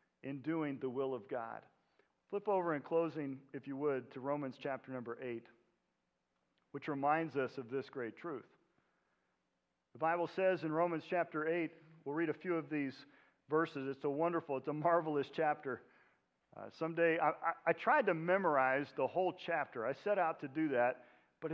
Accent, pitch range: American, 145-200 Hz